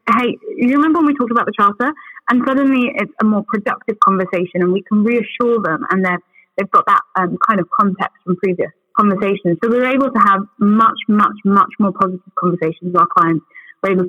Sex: female